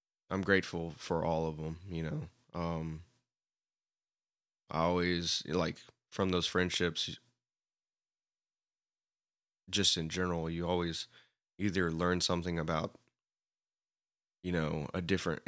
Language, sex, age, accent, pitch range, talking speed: English, male, 20-39, American, 80-90 Hz, 110 wpm